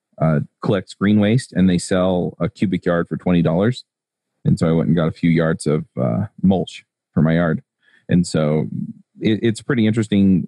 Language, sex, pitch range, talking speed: English, male, 85-105 Hz, 190 wpm